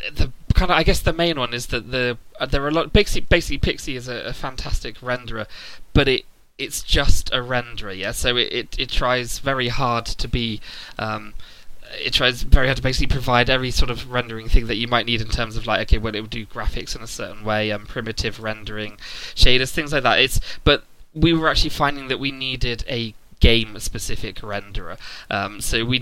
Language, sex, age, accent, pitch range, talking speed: English, male, 20-39, British, 110-130 Hz, 215 wpm